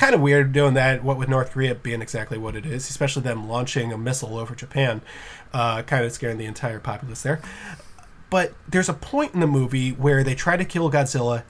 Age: 20-39